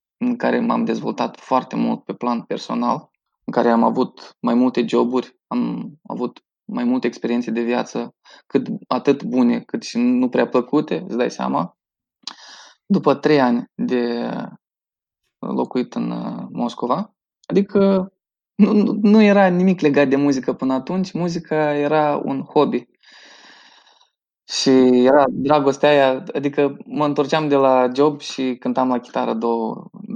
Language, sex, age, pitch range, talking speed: Romanian, male, 20-39, 125-175 Hz, 140 wpm